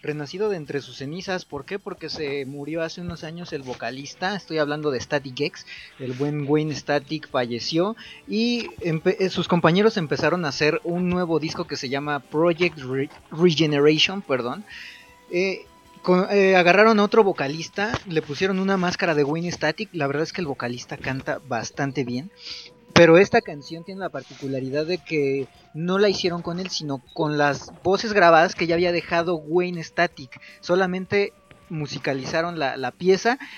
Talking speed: 170 wpm